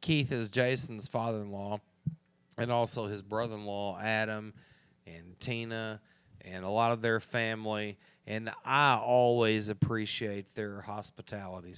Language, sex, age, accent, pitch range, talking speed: English, male, 30-49, American, 105-120 Hz, 115 wpm